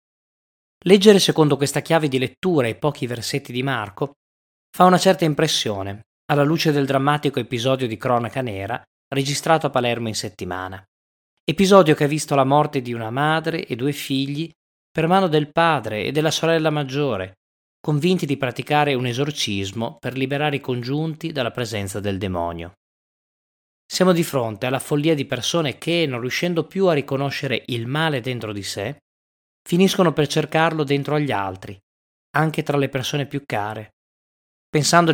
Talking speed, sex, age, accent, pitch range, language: 155 wpm, male, 20-39, native, 110-155 Hz, Italian